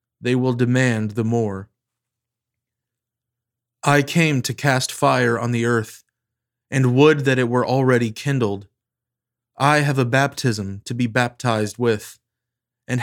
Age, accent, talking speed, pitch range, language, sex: 20-39, American, 135 wpm, 115-130 Hz, English, male